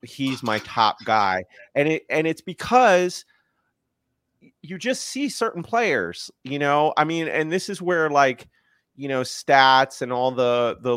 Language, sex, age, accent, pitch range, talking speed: English, male, 30-49, American, 115-155 Hz, 165 wpm